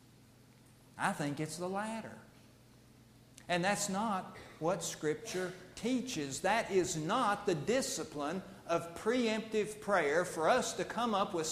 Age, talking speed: 50-69, 130 wpm